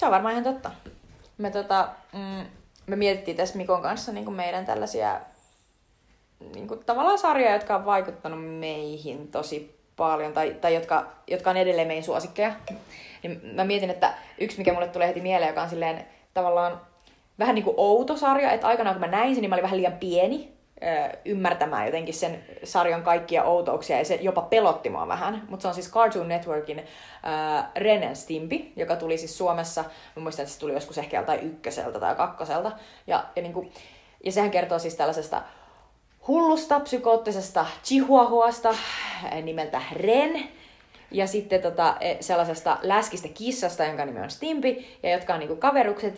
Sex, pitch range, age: female, 170-225 Hz, 20-39